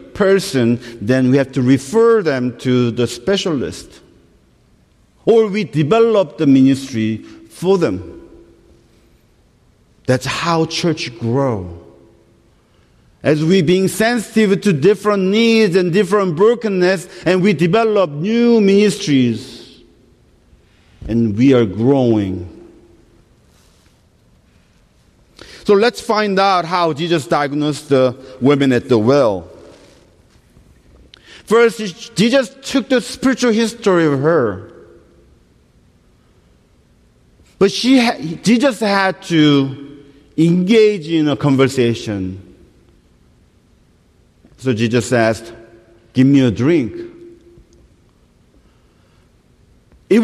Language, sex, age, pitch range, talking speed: English, male, 50-69, 130-205 Hz, 95 wpm